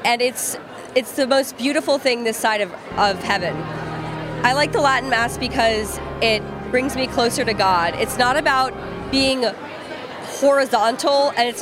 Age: 20-39